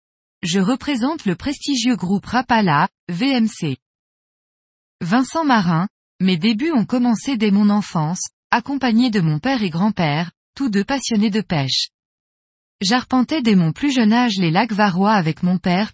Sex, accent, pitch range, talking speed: female, French, 180-245 Hz, 145 wpm